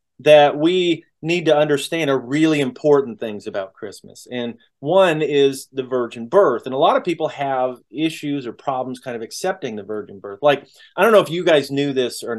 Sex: male